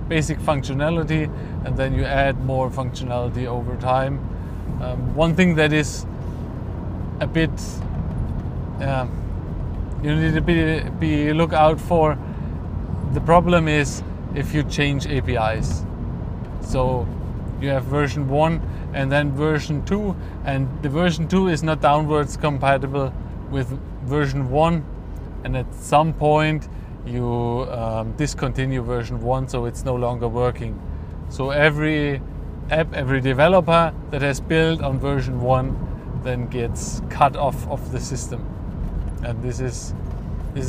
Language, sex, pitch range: English, male, 120-155 Hz